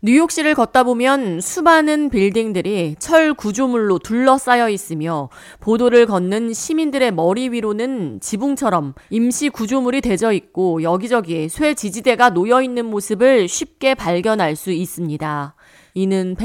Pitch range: 185-250 Hz